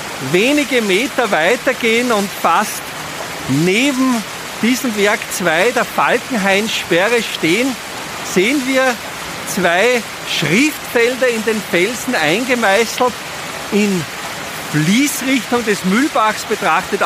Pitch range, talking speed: 190-240 Hz, 90 wpm